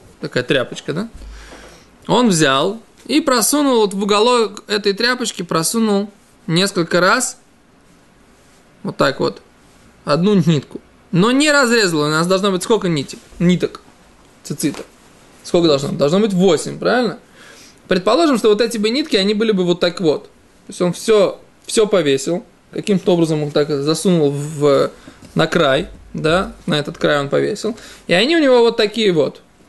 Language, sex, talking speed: Russian, male, 155 wpm